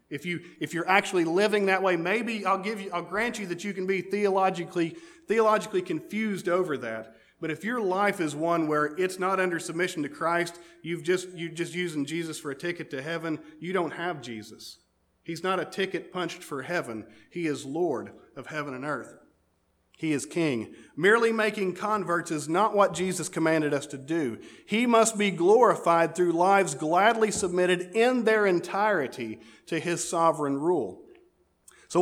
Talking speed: 180 wpm